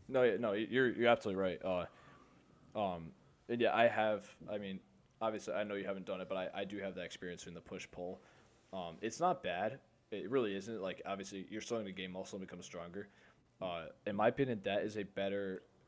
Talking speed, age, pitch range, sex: 220 wpm, 20-39, 90-105 Hz, male